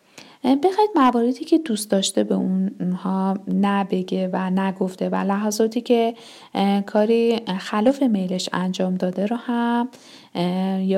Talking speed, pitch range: 115 wpm, 185-230 Hz